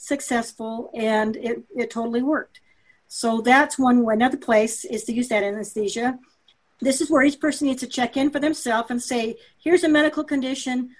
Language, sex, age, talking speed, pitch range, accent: English, female, 50-69, 185 wpm, 230-270 Hz, American